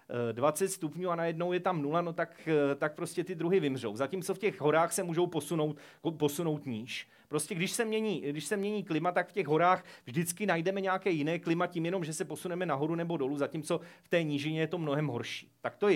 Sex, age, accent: male, 40-59, native